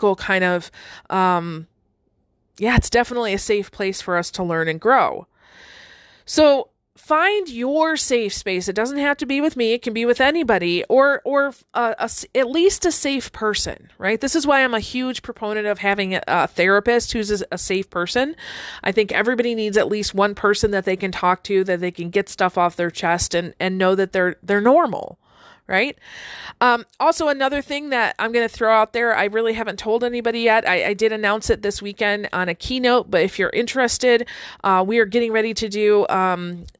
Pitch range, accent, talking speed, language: 195-250 Hz, American, 205 wpm, English